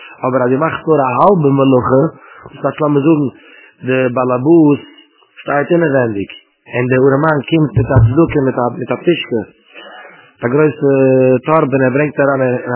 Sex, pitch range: male, 135-165 Hz